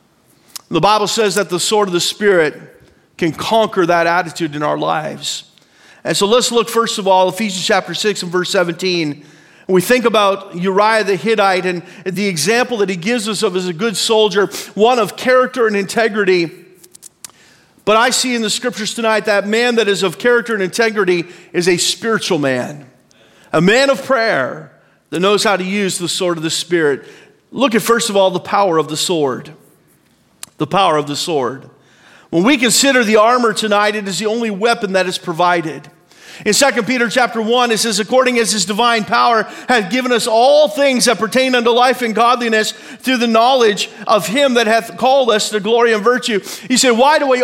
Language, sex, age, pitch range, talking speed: English, male, 40-59, 195-245 Hz, 195 wpm